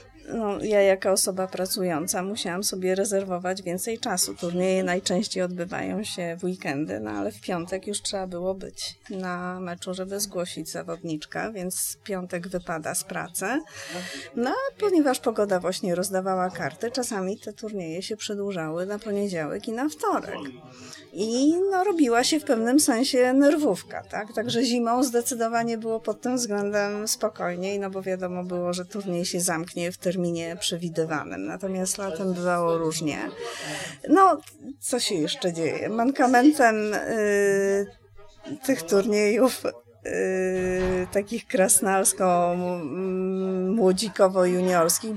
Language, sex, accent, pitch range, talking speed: English, female, Polish, 180-225 Hz, 120 wpm